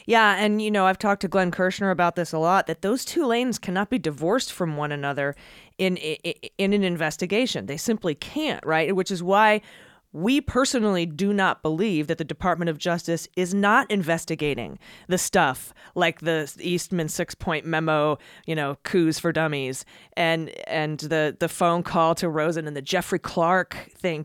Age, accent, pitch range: 30-49, American, 160-195 Hz